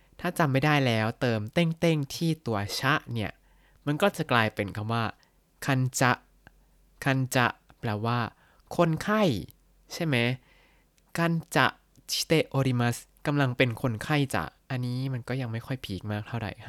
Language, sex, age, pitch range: Thai, male, 20-39, 110-140 Hz